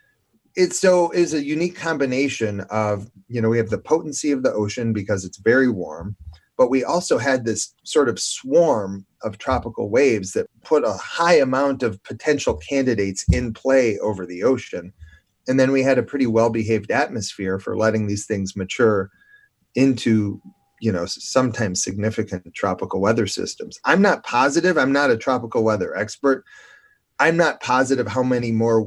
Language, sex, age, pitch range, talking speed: English, male, 30-49, 105-140 Hz, 165 wpm